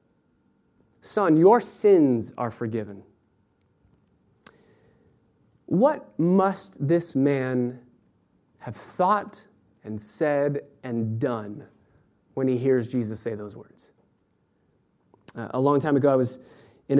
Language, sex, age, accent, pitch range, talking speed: English, male, 30-49, American, 140-220 Hz, 105 wpm